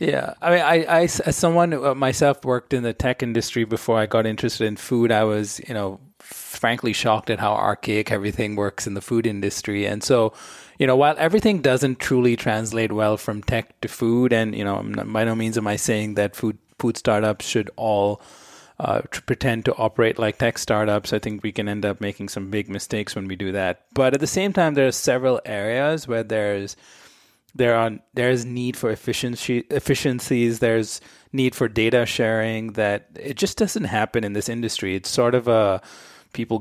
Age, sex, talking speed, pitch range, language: 30-49, male, 195 wpm, 105-130 Hz, English